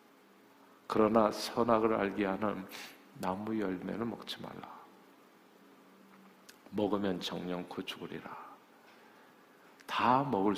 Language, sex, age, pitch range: Korean, male, 50-69, 100-135 Hz